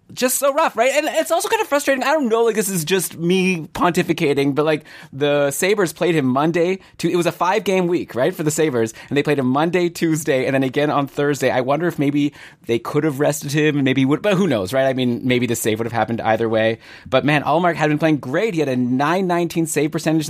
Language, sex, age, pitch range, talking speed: English, male, 20-39, 120-160 Hz, 250 wpm